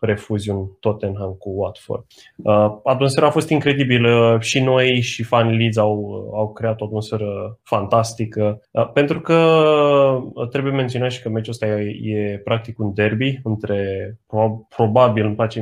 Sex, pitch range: male, 110-130 Hz